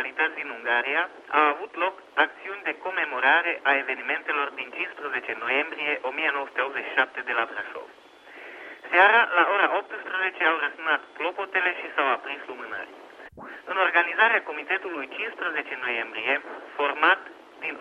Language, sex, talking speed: Romanian, male, 120 wpm